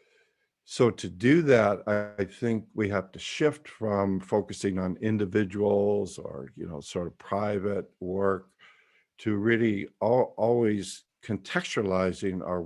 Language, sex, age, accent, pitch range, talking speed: English, male, 60-79, American, 95-105 Hz, 125 wpm